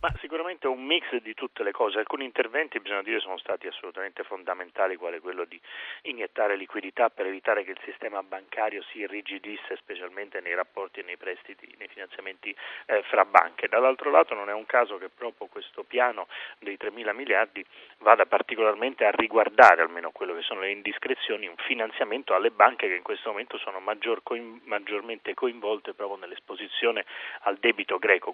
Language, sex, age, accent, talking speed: Italian, male, 30-49, native, 175 wpm